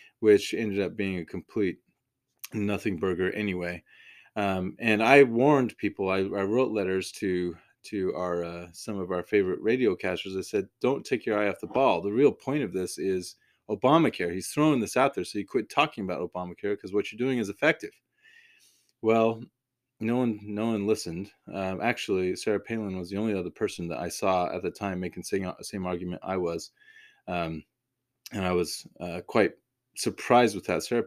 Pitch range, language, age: 90-120 Hz, English, 20-39